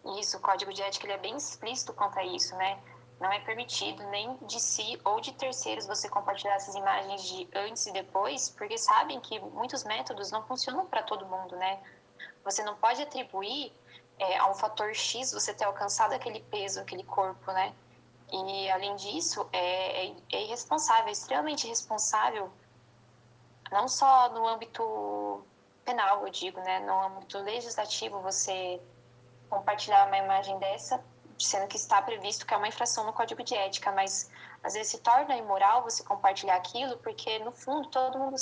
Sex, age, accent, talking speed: female, 10-29, Brazilian, 170 wpm